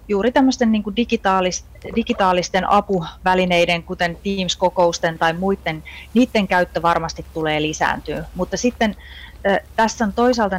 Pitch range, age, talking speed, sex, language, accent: 155-195 Hz, 30-49, 120 wpm, female, Finnish, native